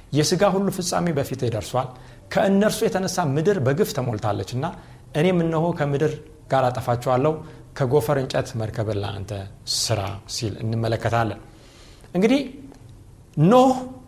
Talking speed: 100 wpm